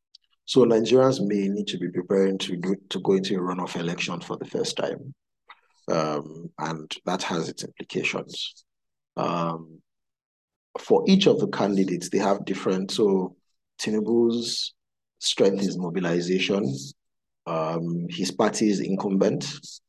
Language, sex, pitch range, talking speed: English, male, 90-105 Hz, 135 wpm